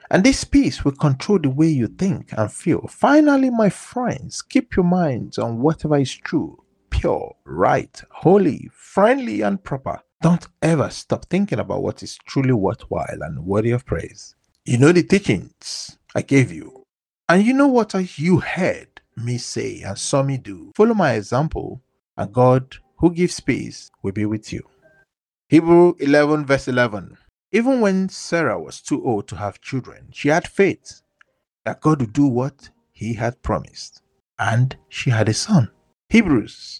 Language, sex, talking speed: English, male, 165 wpm